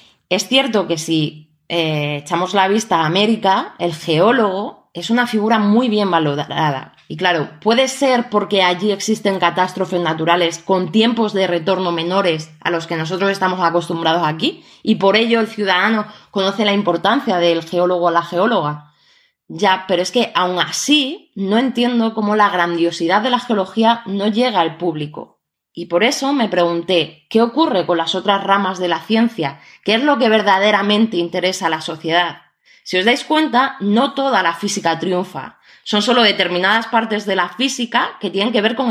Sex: female